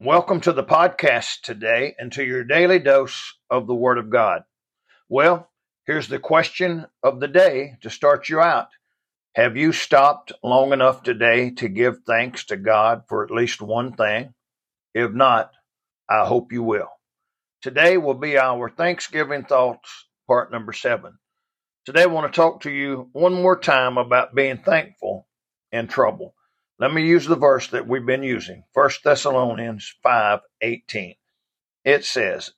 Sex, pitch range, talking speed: male, 120-160 Hz, 160 wpm